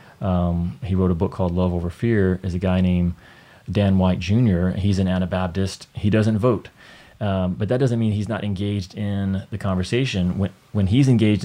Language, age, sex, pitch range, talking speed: English, 30-49, male, 95-110 Hz, 195 wpm